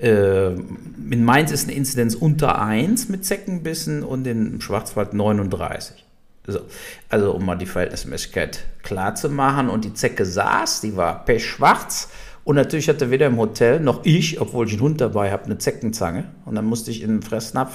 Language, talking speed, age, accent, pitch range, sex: German, 175 wpm, 50-69, German, 105-160 Hz, male